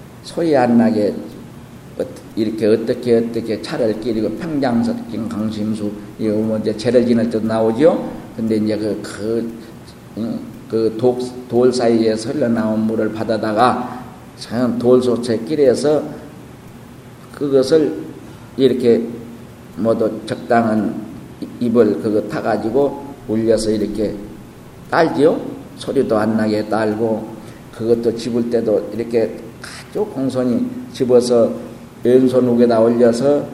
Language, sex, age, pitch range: Korean, male, 50-69, 110-135 Hz